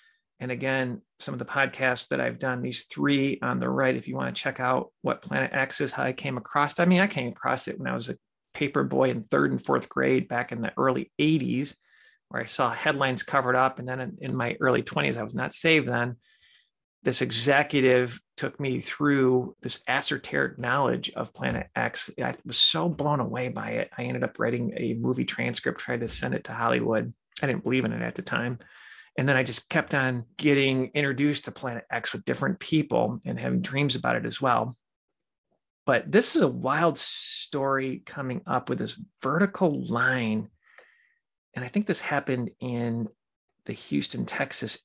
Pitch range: 120-155 Hz